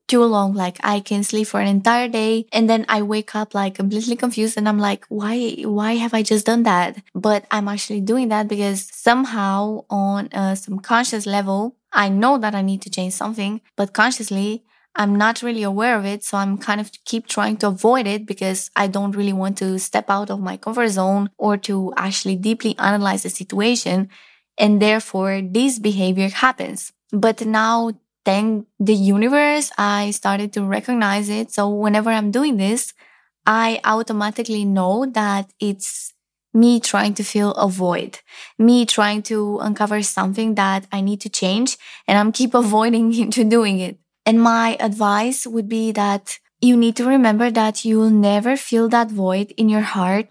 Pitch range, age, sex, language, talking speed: 200-225 Hz, 20-39, female, English, 180 wpm